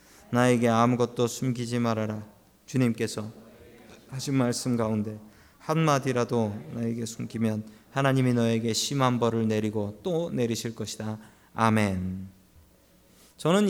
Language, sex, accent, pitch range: Korean, male, native, 115-185 Hz